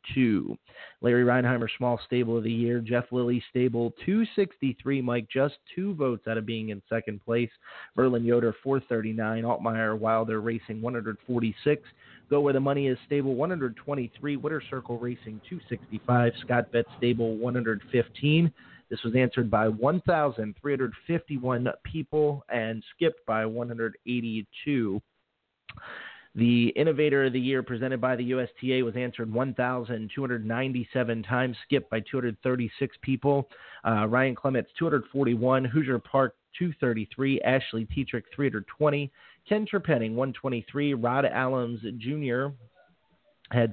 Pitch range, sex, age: 115-135 Hz, male, 30-49